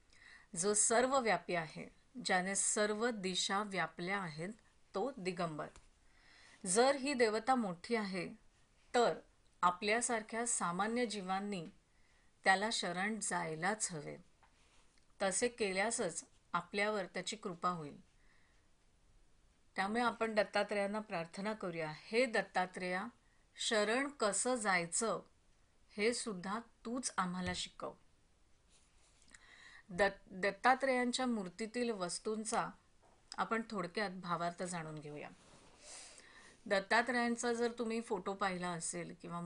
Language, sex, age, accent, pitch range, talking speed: Marathi, female, 40-59, native, 180-225 Hz, 95 wpm